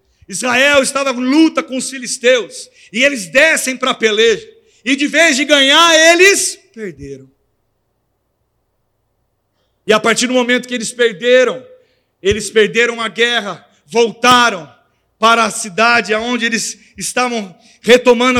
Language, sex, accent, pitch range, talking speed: Portuguese, male, Brazilian, 235-325 Hz, 130 wpm